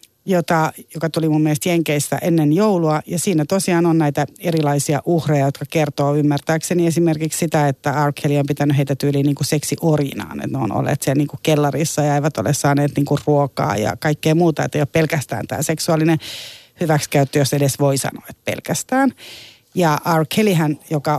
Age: 30-49